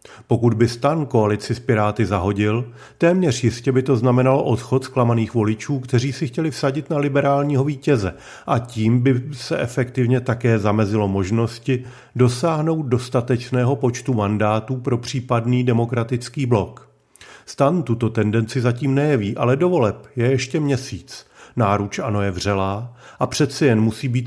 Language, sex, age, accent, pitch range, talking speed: Czech, male, 40-59, native, 115-135 Hz, 140 wpm